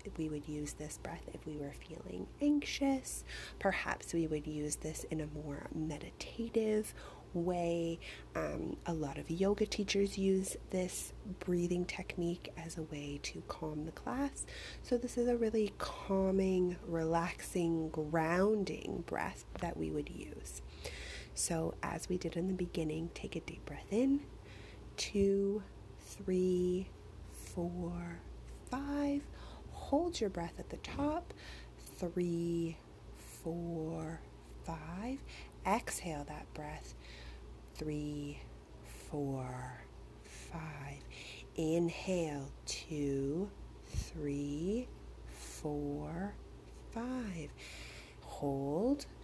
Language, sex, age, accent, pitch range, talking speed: English, female, 30-49, American, 145-190 Hz, 105 wpm